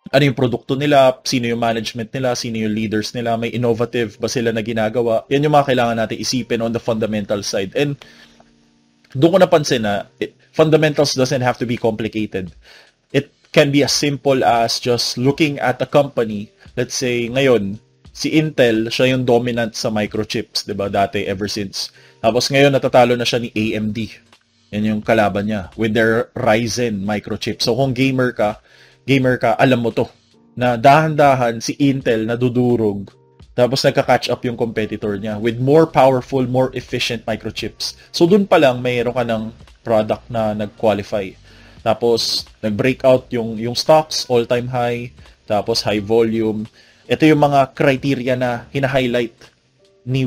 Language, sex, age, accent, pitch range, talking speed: English, male, 20-39, Filipino, 110-135 Hz, 160 wpm